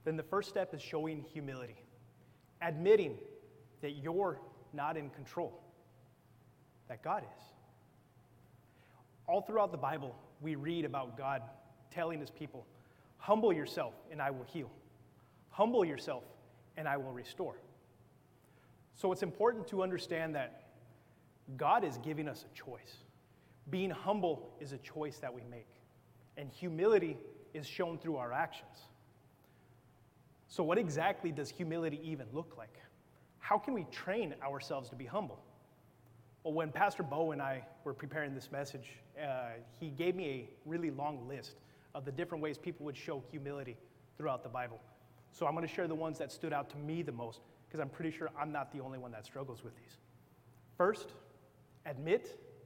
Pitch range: 125-165 Hz